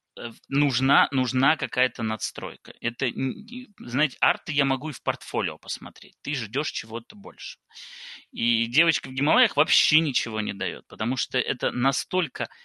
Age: 20-39